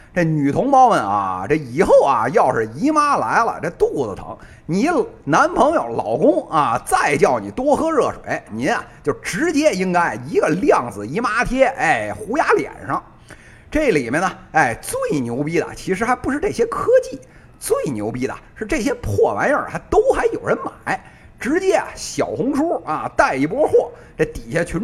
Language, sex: Chinese, male